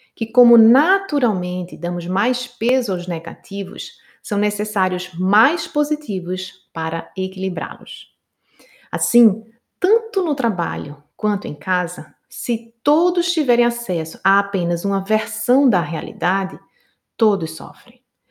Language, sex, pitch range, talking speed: Portuguese, female, 175-240 Hz, 110 wpm